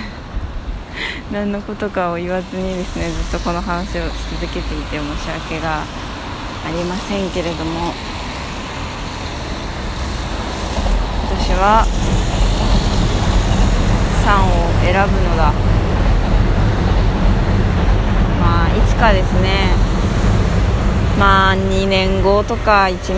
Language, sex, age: Japanese, female, 20-39